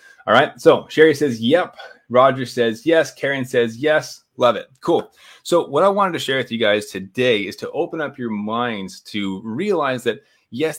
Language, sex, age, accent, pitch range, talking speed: English, male, 30-49, American, 115-140 Hz, 195 wpm